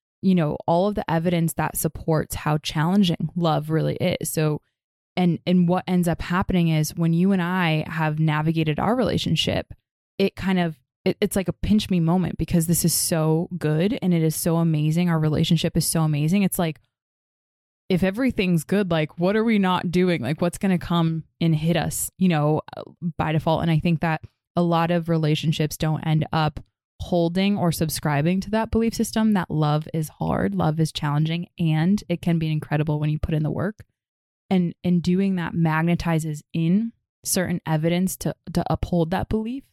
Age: 20-39